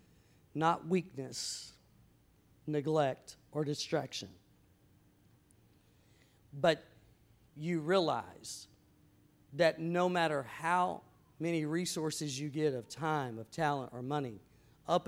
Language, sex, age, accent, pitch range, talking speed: English, male, 50-69, American, 130-165 Hz, 90 wpm